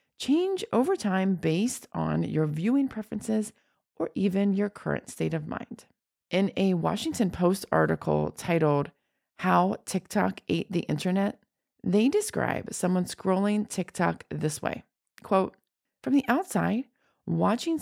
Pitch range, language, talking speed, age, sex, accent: 170-245 Hz, English, 130 wpm, 30-49, female, American